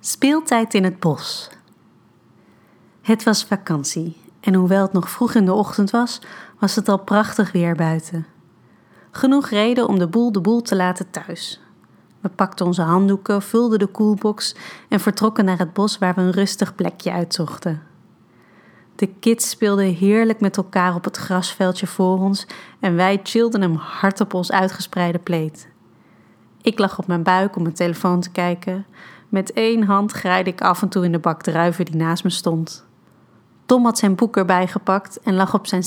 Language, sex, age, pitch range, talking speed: Dutch, female, 30-49, 180-215 Hz, 175 wpm